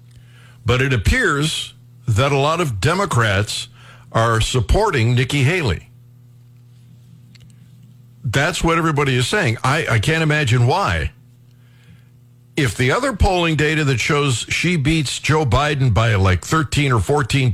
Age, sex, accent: 60-79, male, American